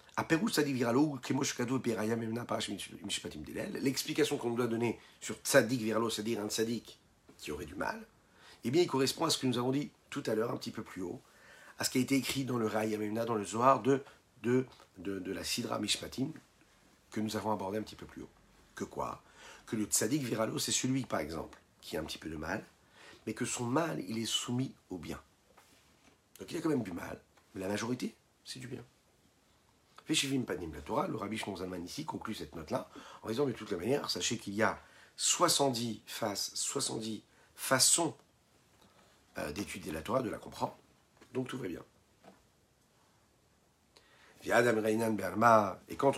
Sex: male